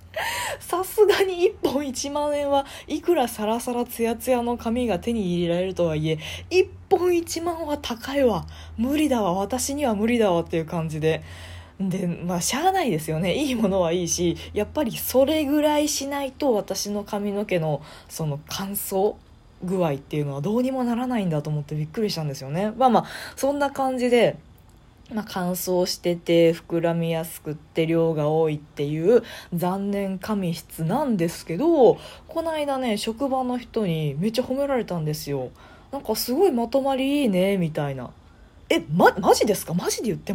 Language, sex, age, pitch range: Japanese, female, 20-39, 170-275 Hz